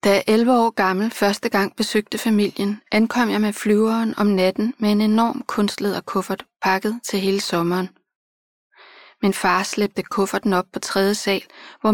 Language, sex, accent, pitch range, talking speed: Danish, female, native, 190-225 Hz, 165 wpm